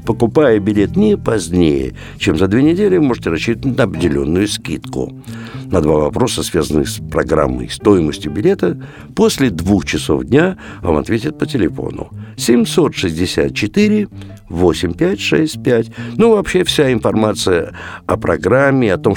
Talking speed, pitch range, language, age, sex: 130 wpm, 85-125 Hz, Russian, 60-79, male